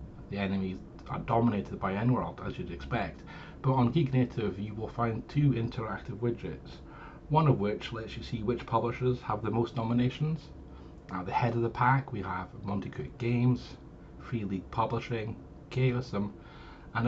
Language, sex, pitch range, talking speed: English, male, 105-130 Hz, 160 wpm